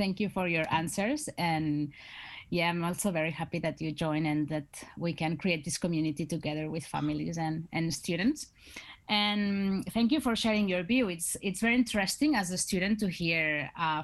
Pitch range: 160-200 Hz